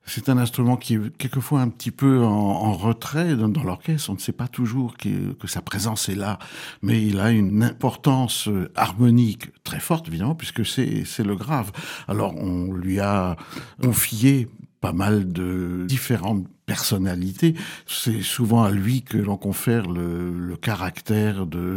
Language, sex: French, male